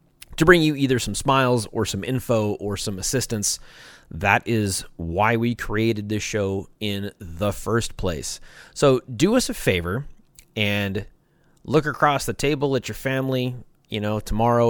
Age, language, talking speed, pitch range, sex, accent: 30-49, English, 160 wpm, 95-120 Hz, male, American